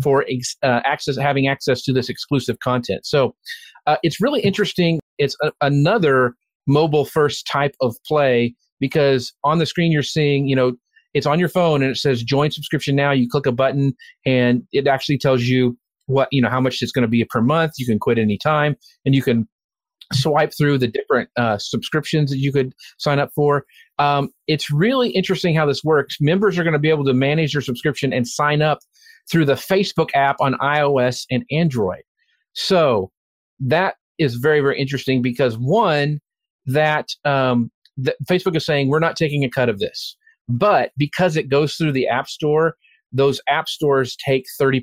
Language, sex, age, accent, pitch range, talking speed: English, male, 40-59, American, 125-155 Hz, 190 wpm